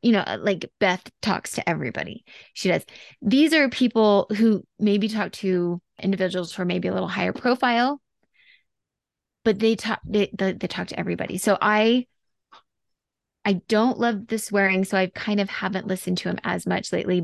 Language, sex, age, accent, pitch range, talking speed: English, female, 20-39, American, 190-240 Hz, 180 wpm